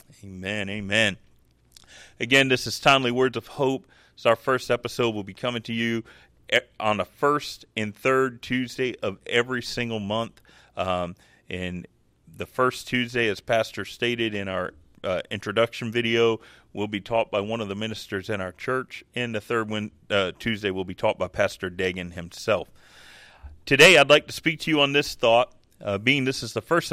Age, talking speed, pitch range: 40-59, 180 wpm, 105-140 Hz